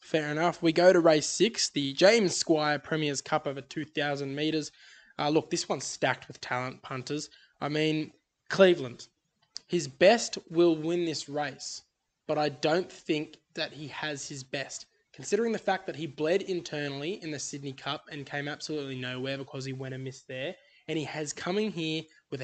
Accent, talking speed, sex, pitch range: Australian, 180 wpm, male, 145-170 Hz